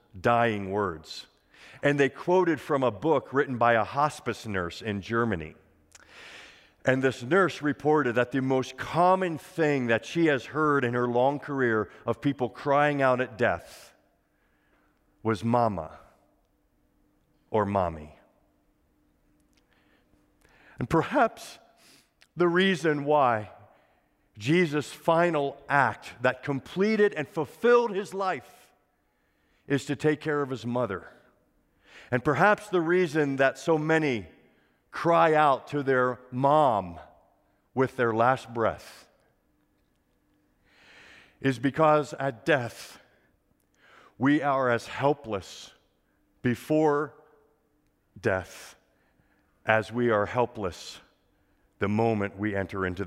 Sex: male